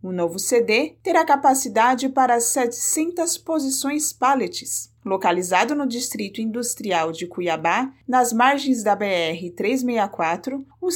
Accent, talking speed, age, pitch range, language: Brazilian, 110 wpm, 30-49, 195-275 Hz, Portuguese